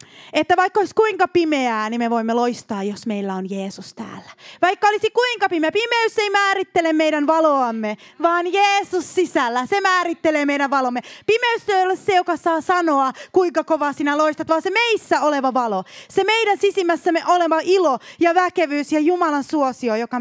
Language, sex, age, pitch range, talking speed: Finnish, female, 20-39, 245-370 Hz, 170 wpm